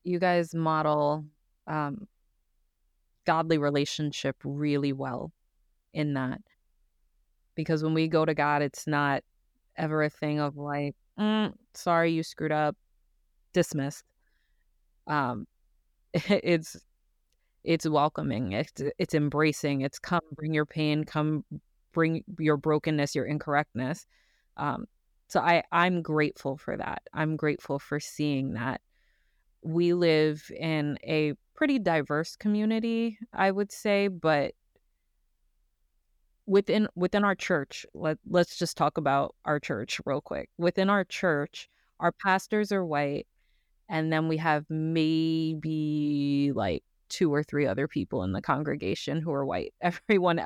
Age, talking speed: 20-39, 130 wpm